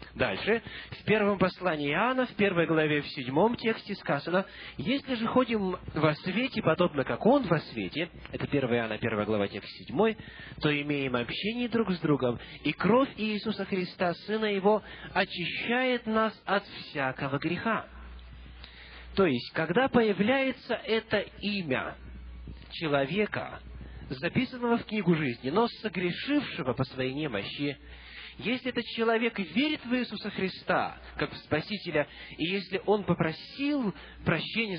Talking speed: 135 wpm